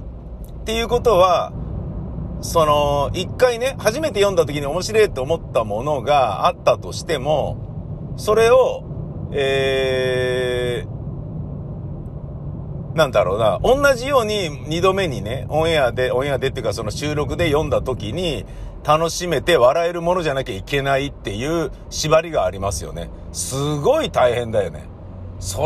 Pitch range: 110-155 Hz